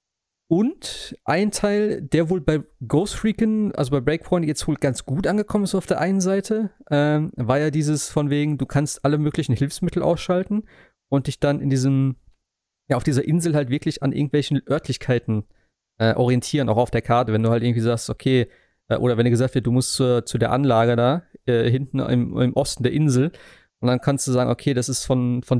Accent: German